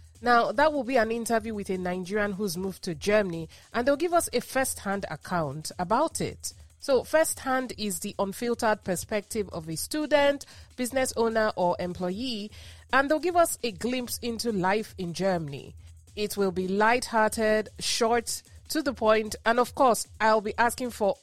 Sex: female